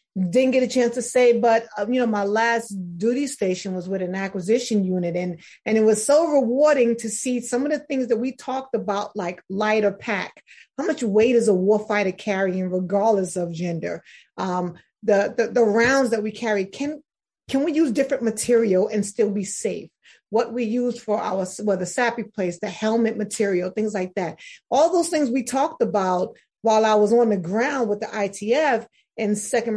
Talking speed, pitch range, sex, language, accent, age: 195 wpm, 205-245 Hz, female, English, American, 30-49